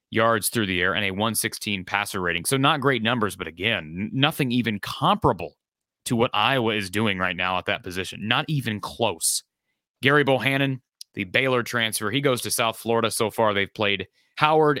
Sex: male